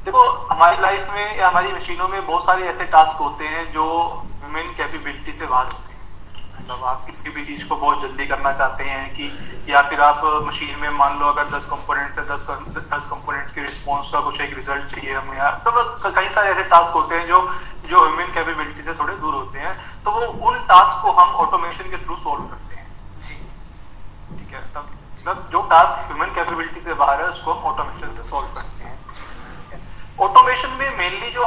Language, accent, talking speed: Hindi, native, 195 wpm